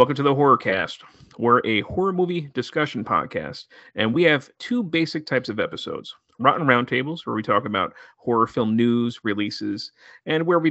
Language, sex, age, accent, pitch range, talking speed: English, male, 40-59, American, 115-150 Hz, 175 wpm